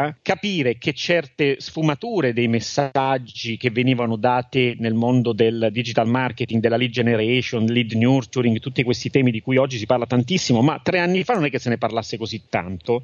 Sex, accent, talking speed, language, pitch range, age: male, native, 185 wpm, Italian, 120-150 Hz, 40-59